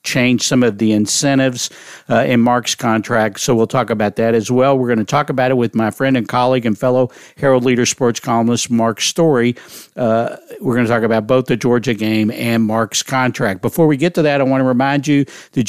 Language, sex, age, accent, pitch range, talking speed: English, male, 50-69, American, 115-135 Hz, 225 wpm